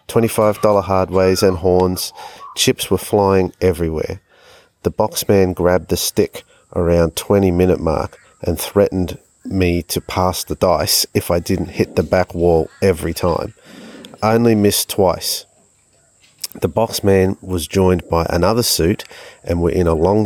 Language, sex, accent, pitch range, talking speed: English, male, Australian, 85-100 Hz, 140 wpm